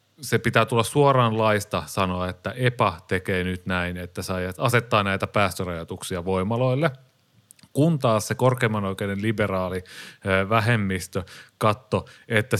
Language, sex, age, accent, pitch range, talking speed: Finnish, male, 30-49, native, 95-120 Hz, 120 wpm